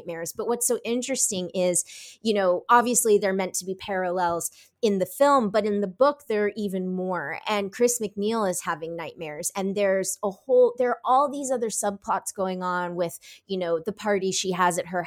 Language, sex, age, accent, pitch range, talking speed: English, female, 20-39, American, 185-235 Hz, 205 wpm